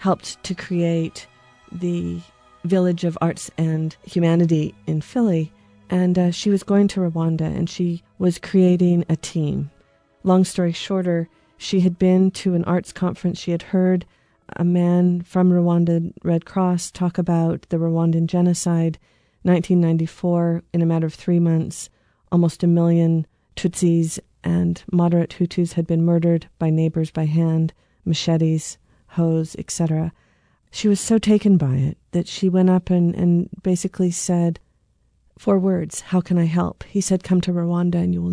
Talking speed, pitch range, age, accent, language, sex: 155 wpm, 165-185 Hz, 40-59, American, English, female